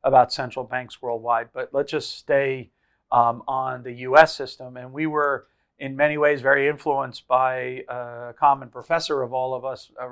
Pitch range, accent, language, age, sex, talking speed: 130-150 Hz, American, English, 50-69, male, 180 wpm